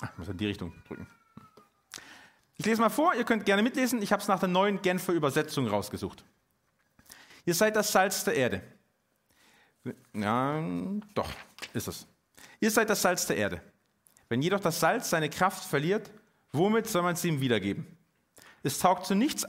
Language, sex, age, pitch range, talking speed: German, male, 40-59, 135-210 Hz, 170 wpm